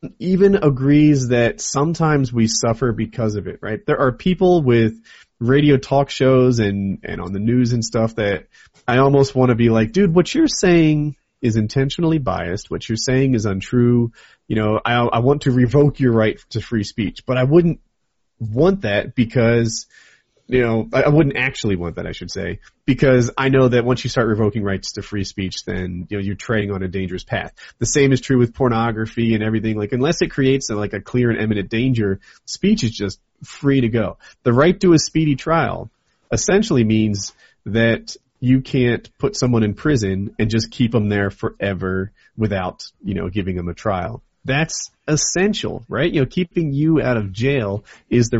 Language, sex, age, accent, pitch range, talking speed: English, male, 30-49, American, 110-135 Hz, 195 wpm